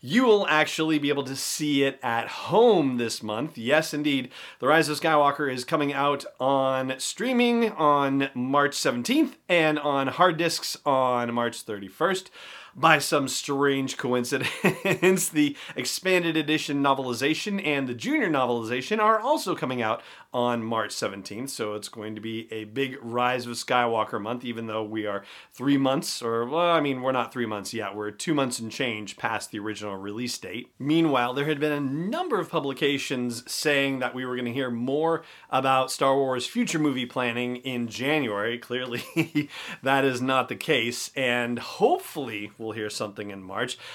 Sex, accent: male, American